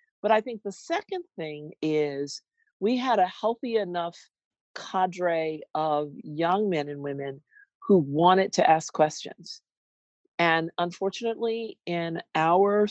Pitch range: 170-245 Hz